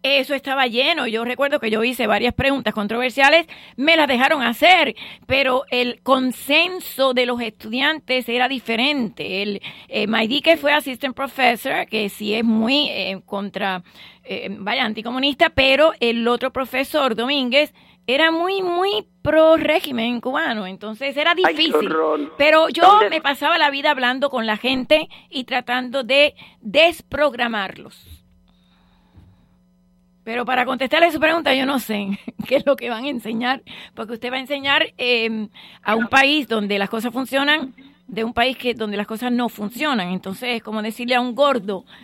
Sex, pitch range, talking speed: female, 215-275 Hz, 160 wpm